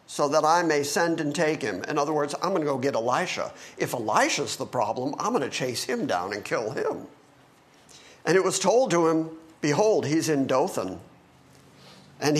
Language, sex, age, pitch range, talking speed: English, male, 50-69, 150-205 Hz, 200 wpm